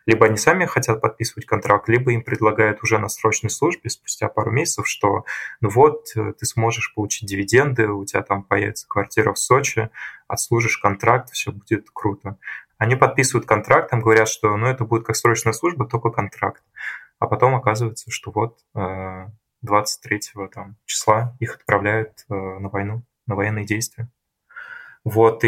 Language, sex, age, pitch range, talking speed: Russian, male, 20-39, 105-115 Hz, 150 wpm